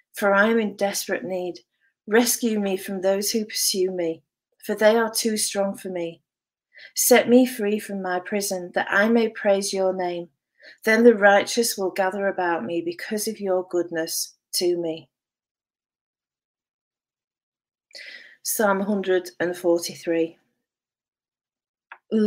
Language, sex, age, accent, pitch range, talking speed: English, female, 40-59, British, 175-215 Hz, 125 wpm